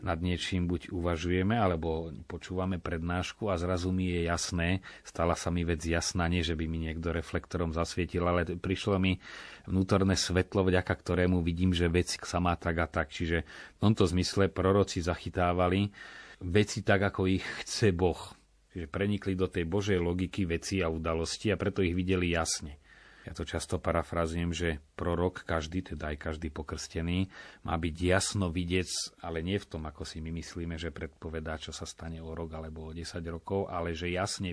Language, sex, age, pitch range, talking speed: Slovak, male, 30-49, 85-95 Hz, 175 wpm